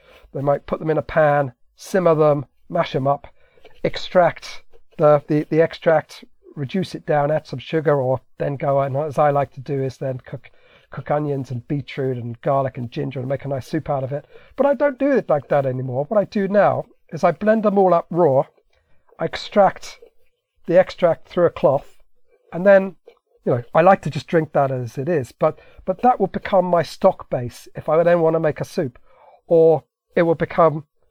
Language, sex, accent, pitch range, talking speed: English, male, British, 145-200 Hz, 210 wpm